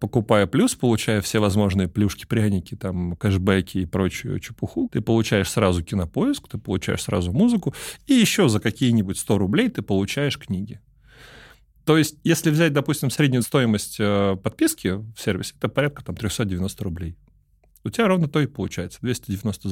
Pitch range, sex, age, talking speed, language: 100-145 Hz, male, 30-49, 150 wpm, Russian